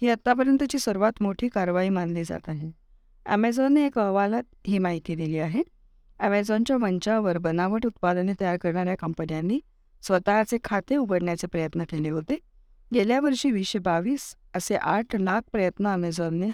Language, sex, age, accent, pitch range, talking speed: Marathi, female, 20-39, native, 170-225 Hz, 130 wpm